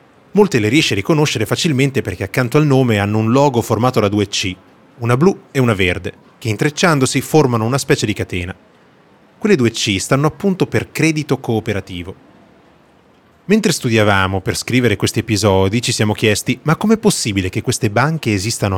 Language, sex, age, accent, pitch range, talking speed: Italian, male, 30-49, native, 100-135 Hz, 170 wpm